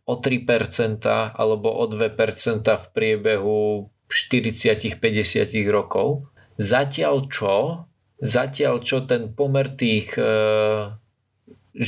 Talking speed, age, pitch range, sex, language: 80 wpm, 40-59, 110-135 Hz, male, Slovak